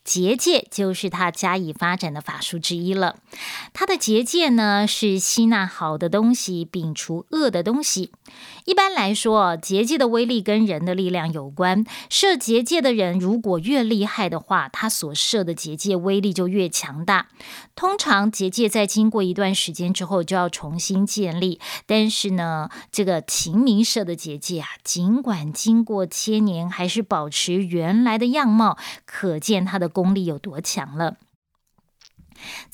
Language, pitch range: Chinese, 180-230 Hz